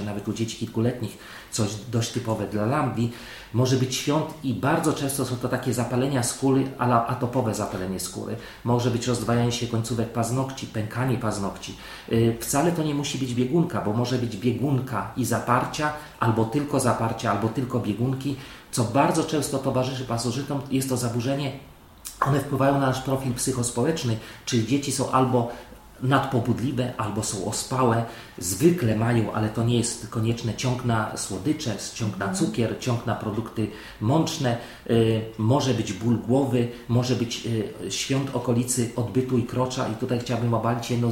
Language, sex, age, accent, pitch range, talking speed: Polish, male, 40-59, native, 115-130 Hz, 155 wpm